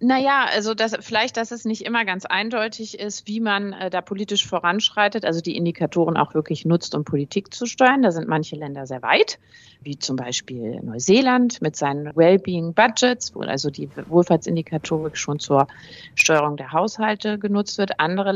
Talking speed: 165 wpm